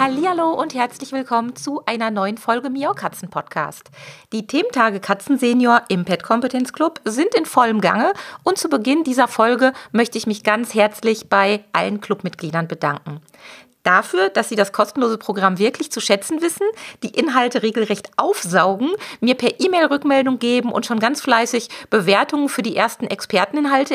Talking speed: 160 wpm